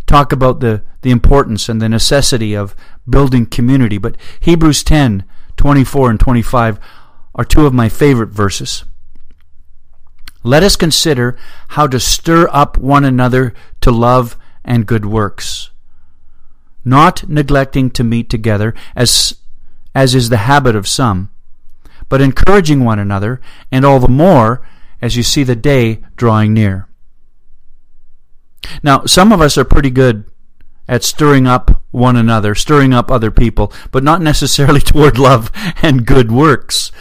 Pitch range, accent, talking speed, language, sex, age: 110-145 Hz, American, 145 wpm, English, male, 40-59